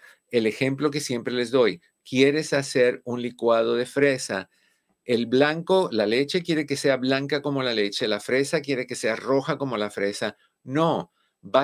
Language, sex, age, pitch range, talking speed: Spanish, male, 50-69, 105-145 Hz, 175 wpm